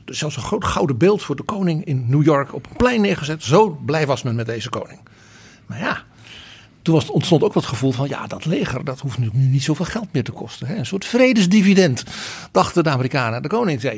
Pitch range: 130-165 Hz